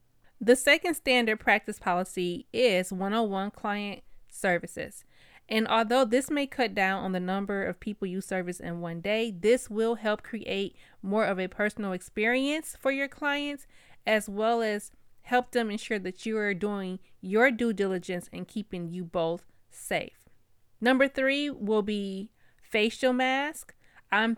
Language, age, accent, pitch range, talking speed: English, 20-39, American, 195-240 Hz, 155 wpm